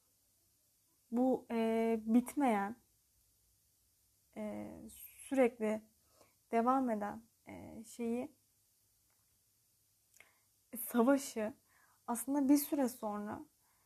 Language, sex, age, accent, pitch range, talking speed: Turkish, female, 30-49, native, 195-250 Hz, 50 wpm